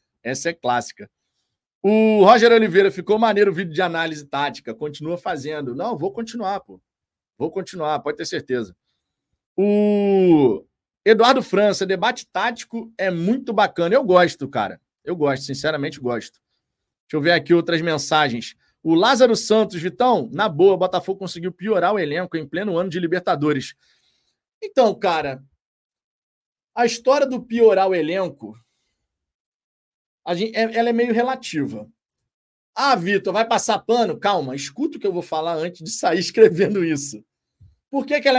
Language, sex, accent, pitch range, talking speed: Portuguese, male, Brazilian, 155-230 Hz, 150 wpm